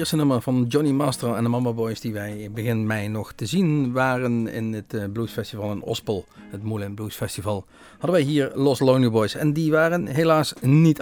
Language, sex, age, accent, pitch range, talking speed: Dutch, male, 40-59, Dutch, 105-140 Hz, 210 wpm